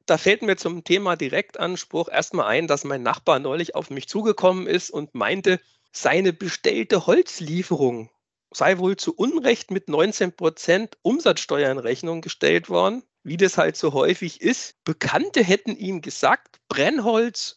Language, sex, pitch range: German, male, 155-220 Hz